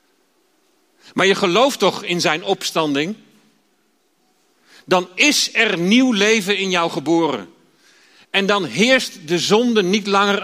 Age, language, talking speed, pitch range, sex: 40-59, Dutch, 125 wpm, 155-225 Hz, male